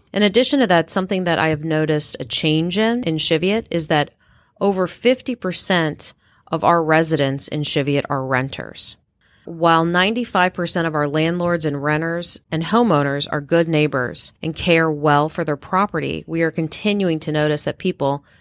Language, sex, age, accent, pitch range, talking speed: English, female, 30-49, American, 145-175 Hz, 165 wpm